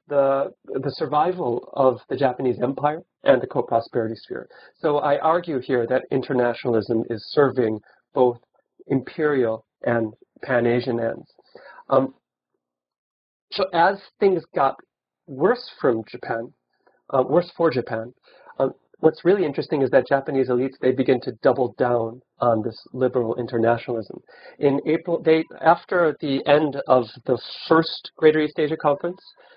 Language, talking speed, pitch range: English, 135 wpm, 120-150 Hz